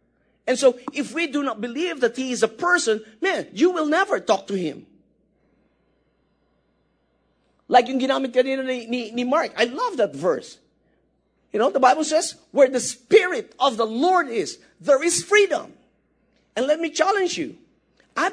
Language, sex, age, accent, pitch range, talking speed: English, male, 50-69, Filipino, 250-325 Hz, 170 wpm